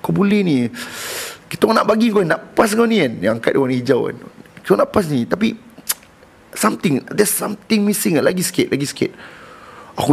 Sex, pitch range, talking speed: male, 115-170 Hz, 190 wpm